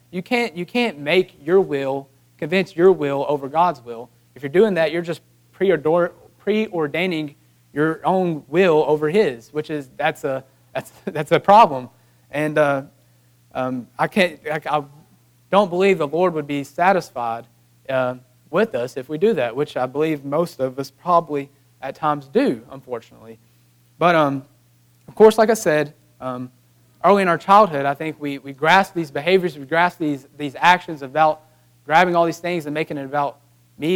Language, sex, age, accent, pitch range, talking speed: English, male, 30-49, American, 130-175 Hz, 175 wpm